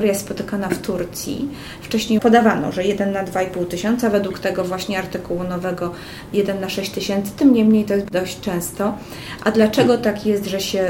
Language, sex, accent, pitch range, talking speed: Polish, female, native, 180-210 Hz, 175 wpm